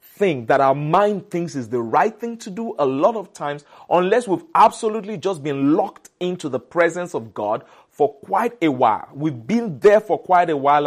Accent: Nigerian